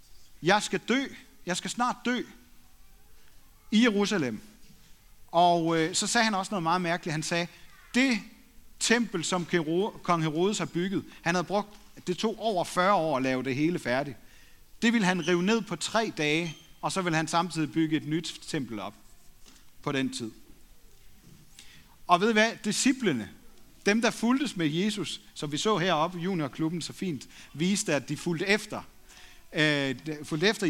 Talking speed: 170 wpm